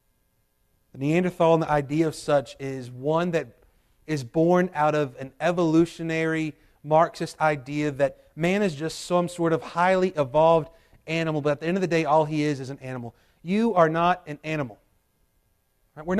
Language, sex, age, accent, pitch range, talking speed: English, male, 30-49, American, 160-215 Hz, 170 wpm